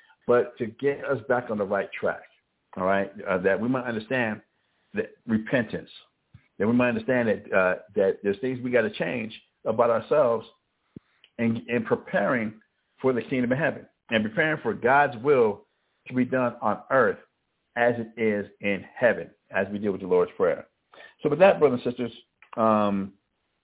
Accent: American